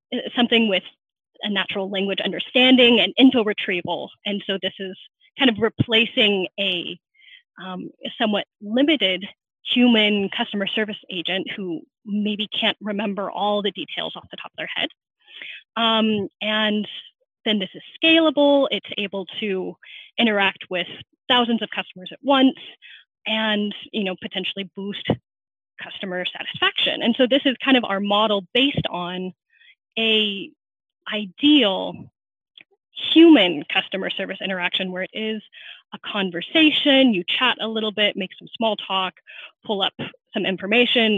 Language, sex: English, female